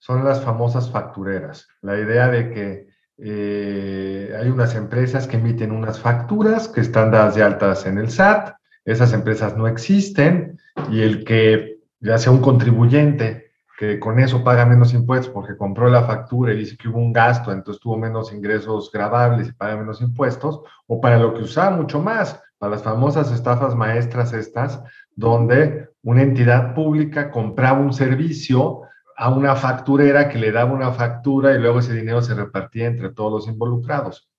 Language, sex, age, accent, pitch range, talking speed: Spanish, male, 50-69, Mexican, 115-155 Hz, 170 wpm